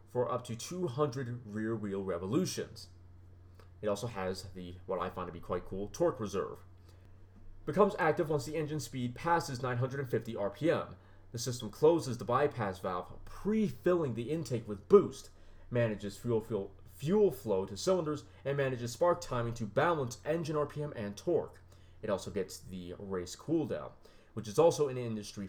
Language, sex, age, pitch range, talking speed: English, male, 30-49, 100-140 Hz, 160 wpm